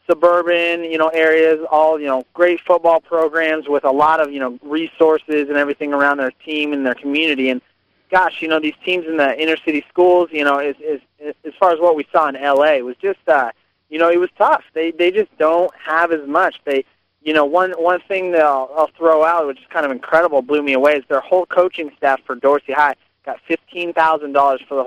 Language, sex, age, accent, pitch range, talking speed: English, male, 30-49, American, 135-160 Hz, 230 wpm